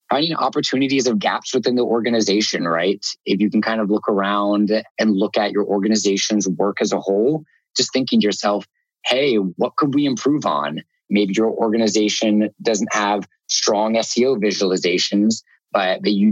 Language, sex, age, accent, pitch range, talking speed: English, male, 20-39, American, 100-110 Hz, 165 wpm